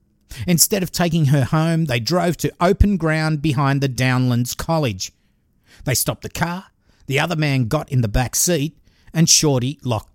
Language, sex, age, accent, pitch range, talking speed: English, male, 50-69, Australian, 125-165 Hz, 170 wpm